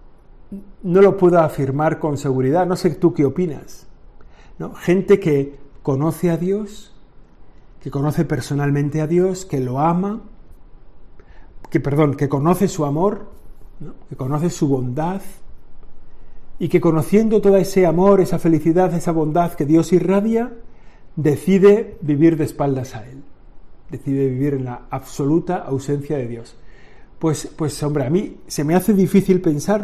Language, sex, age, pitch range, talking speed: Spanish, male, 50-69, 140-180 Hz, 140 wpm